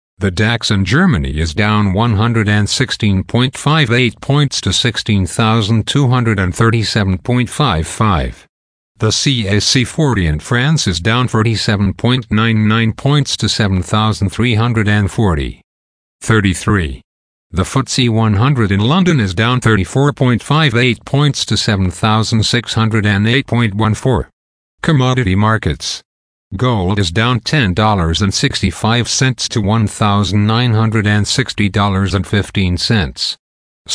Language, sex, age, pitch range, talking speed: English, male, 50-69, 95-120 Hz, 70 wpm